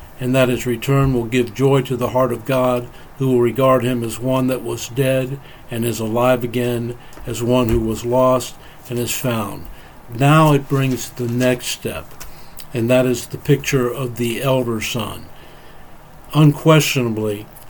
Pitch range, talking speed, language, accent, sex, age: 120-145 Hz, 165 wpm, English, American, male, 60-79